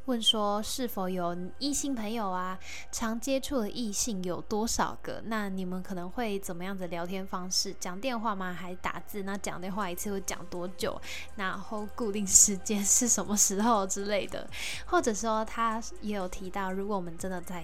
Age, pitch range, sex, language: 10-29, 185-230 Hz, female, Chinese